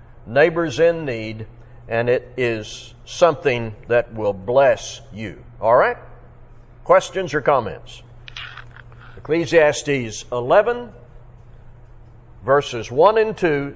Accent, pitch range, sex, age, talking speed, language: American, 120-170 Hz, male, 60-79, 95 wpm, English